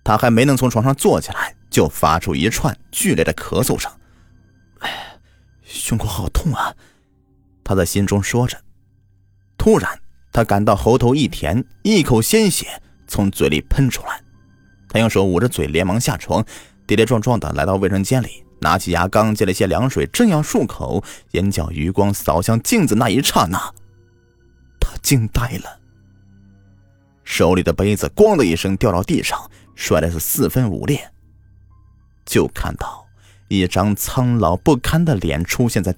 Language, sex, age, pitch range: Chinese, male, 30-49, 90-110 Hz